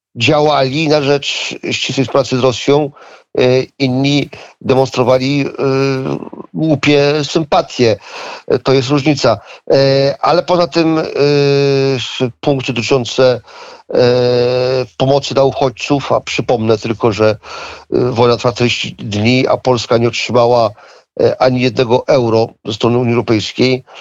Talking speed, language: 100 wpm, Polish